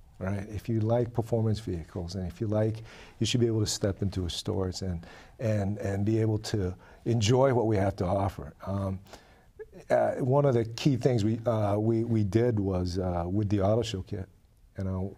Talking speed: 205 wpm